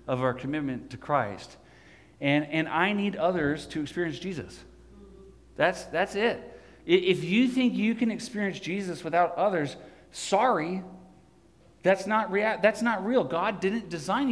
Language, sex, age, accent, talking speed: English, male, 40-59, American, 145 wpm